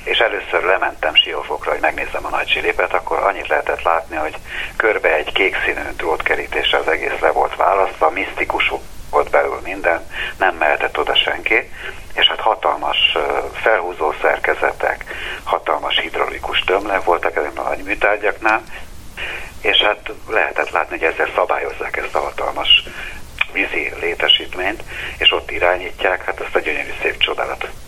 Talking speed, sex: 140 wpm, male